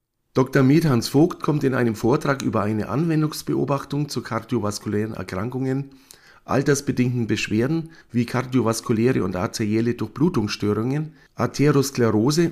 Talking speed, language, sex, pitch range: 100 wpm, German, male, 110-140 Hz